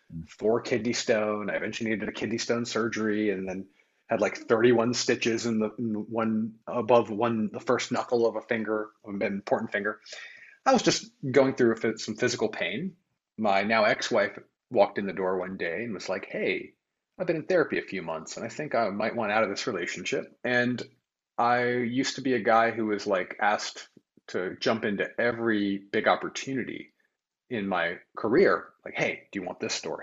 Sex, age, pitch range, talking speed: male, 30-49, 105-120 Hz, 190 wpm